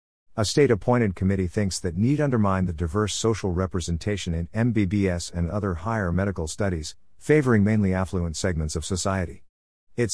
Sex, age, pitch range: male, 50-69, 85-115 Hz